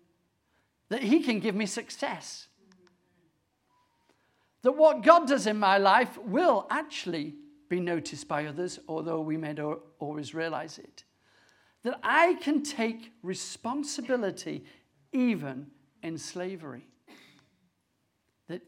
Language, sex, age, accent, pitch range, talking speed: English, male, 50-69, British, 175-260 Hz, 110 wpm